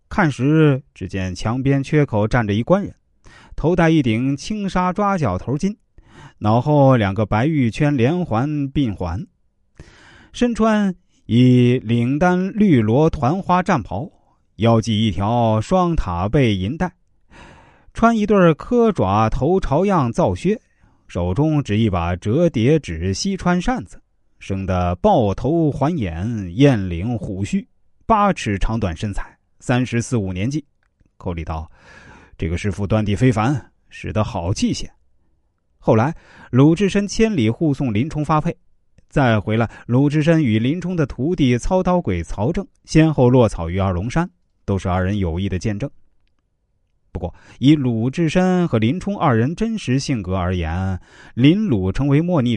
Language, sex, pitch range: Chinese, male, 100-160 Hz